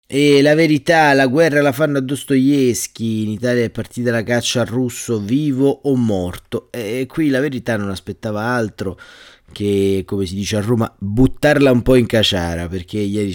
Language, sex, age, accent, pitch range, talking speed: Italian, male, 30-49, native, 95-115 Hz, 180 wpm